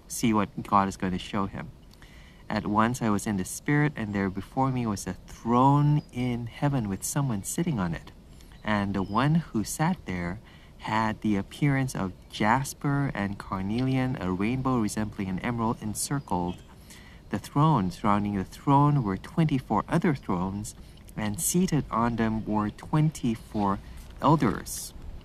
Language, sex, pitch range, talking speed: English, male, 100-130 Hz, 150 wpm